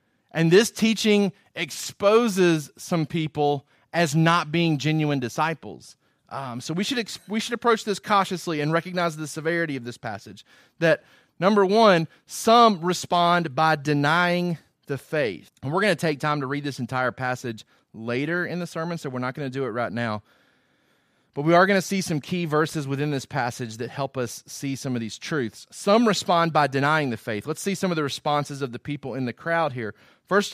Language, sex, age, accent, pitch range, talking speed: English, male, 30-49, American, 140-180 Hz, 195 wpm